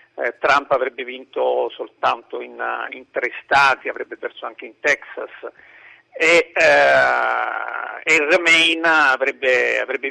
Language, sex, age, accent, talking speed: Italian, male, 50-69, native, 115 wpm